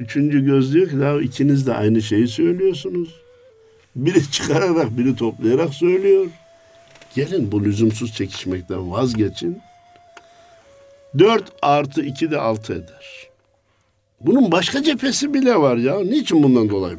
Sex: male